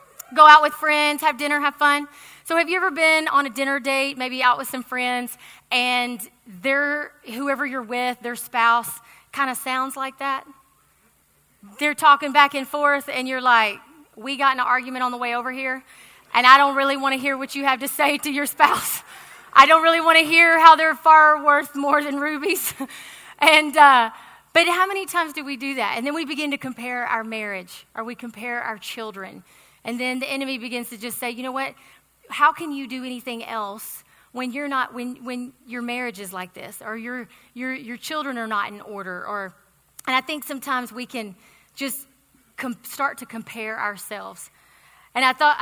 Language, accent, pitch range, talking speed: English, American, 240-290 Hz, 200 wpm